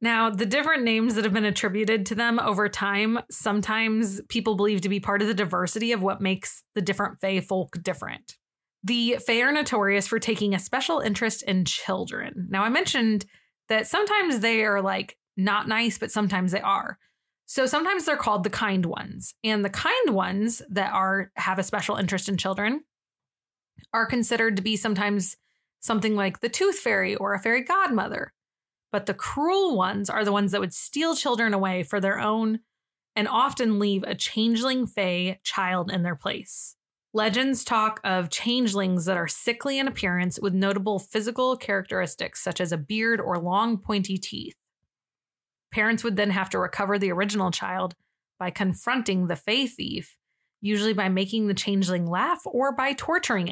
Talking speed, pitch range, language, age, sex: 175 wpm, 195-230 Hz, English, 20-39, female